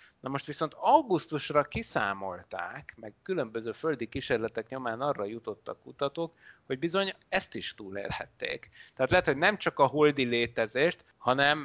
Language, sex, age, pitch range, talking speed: Hungarian, male, 30-49, 120-155 Hz, 140 wpm